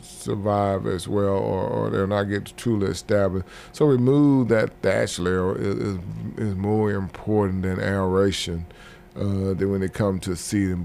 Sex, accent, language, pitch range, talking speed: male, American, English, 95-105 Hz, 155 wpm